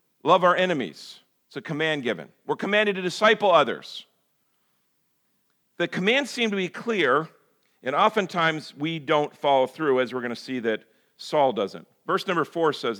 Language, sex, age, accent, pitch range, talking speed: English, male, 50-69, American, 150-210 Hz, 165 wpm